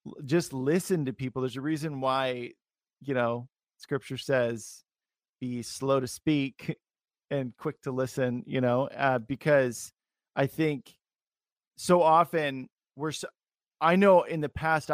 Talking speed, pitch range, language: 140 wpm, 130-160 Hz, English